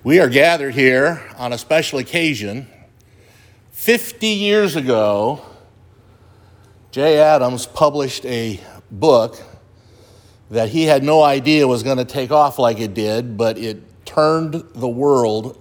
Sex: male